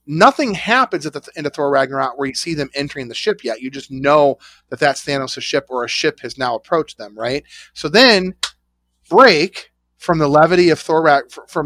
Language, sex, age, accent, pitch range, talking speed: English, male, 30-49, American, 145-205 Hz, 205 wpm